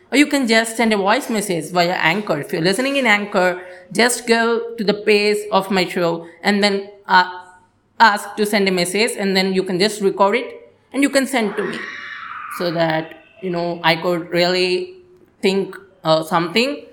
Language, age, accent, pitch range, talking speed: English, 20-39, Indian, 185-230 Hz, 190 wpm